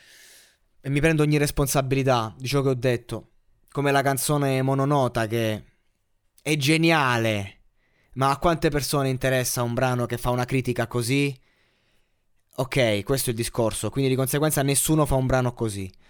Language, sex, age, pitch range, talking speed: Italian, male, 20-39, 115-145 Hz, 155 wpm